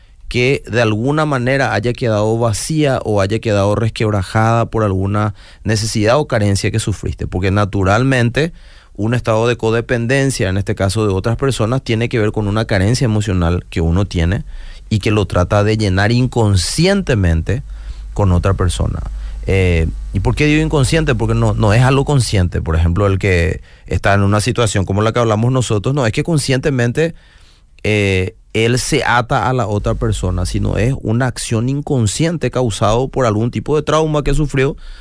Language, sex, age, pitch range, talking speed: Spanish, male, 30-49, 95-125 Hz, 170 wpm